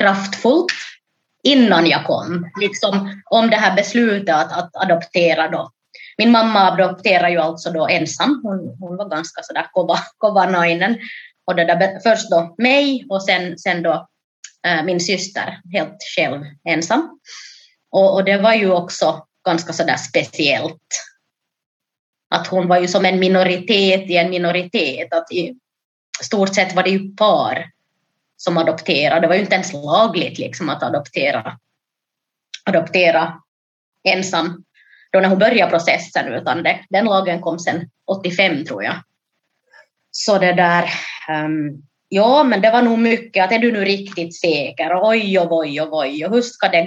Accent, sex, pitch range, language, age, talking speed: native, female, 170-210 Hz, Finnish, 20-39, 155 wpm